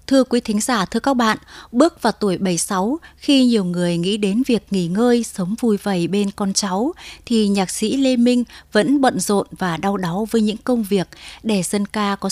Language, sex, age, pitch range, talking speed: Vietnamese, female, 20-39, 190-235 Hz, 220 wpm